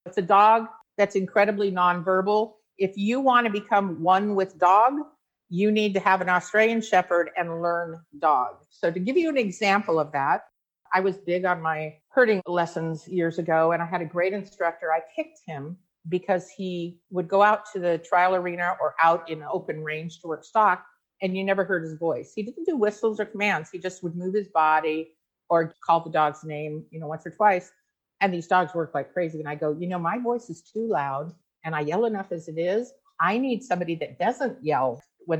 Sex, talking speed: female, 210 wpm